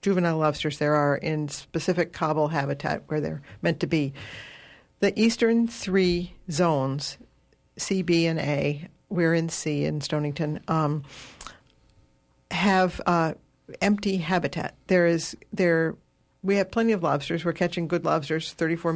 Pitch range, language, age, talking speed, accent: 150-180 Hz, English, 50-69, 140 wpm, American